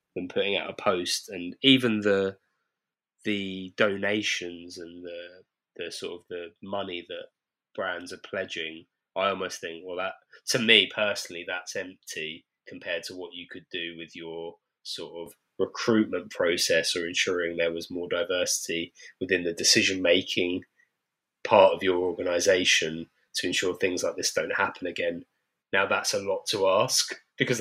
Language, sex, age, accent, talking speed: English, male, 20-39, British, 155 wpm